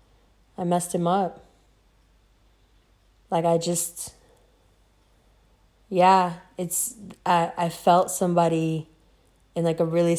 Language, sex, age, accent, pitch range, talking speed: English, female, 20-39, American, 150-185 Hz, 100 wpm